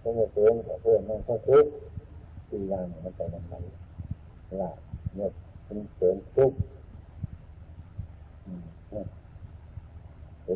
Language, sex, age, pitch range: Thai, male, 60-79, 85-105 Hz